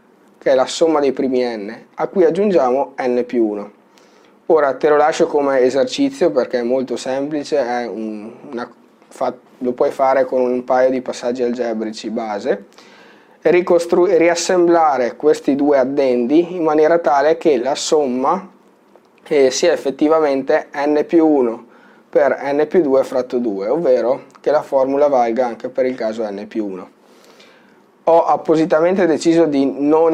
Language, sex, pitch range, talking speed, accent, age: Italian, male, 120-155 Hz, 155 wpm, native, 20-39